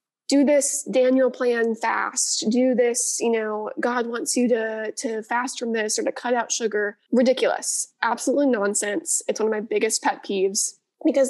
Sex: female